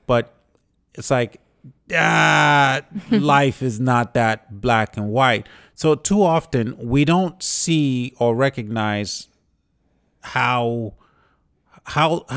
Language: English